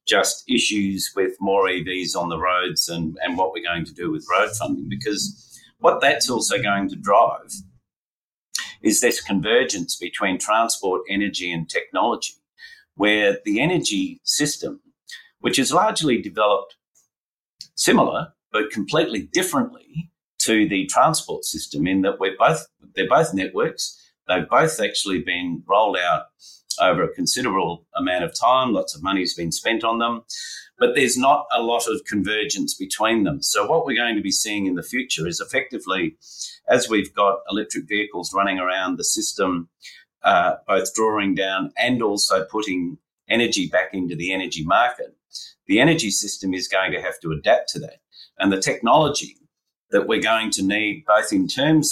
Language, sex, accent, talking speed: English, male, Australian, 165 wpm